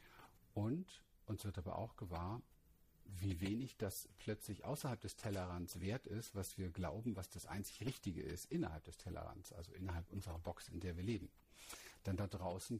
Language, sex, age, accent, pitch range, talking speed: German, male, 50-69, German, 90-105 Hz, 175 wpm